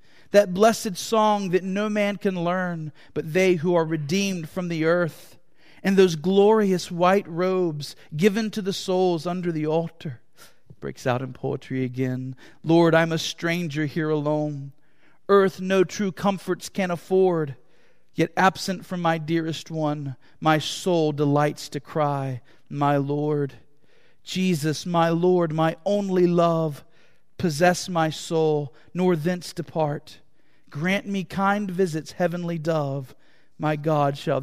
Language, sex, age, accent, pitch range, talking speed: English, male, 40-59, American, 145-185 Hz, 140 wpm